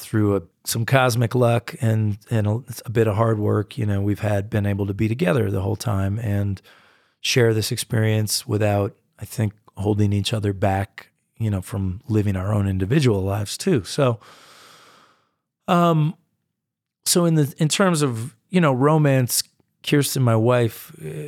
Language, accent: English, American